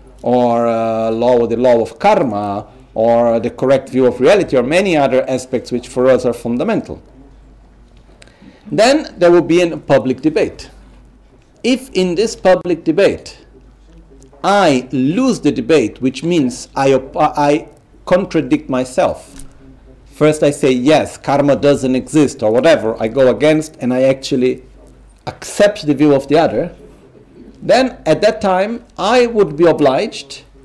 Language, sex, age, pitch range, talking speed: Italian, male, 50-69, 130-180 Hz, 145 wpm